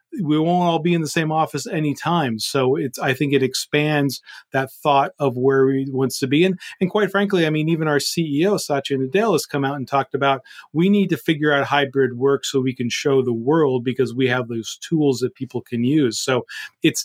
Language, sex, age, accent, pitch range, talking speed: English, male, 40-59, American, 130-160 Hz, 230 wpm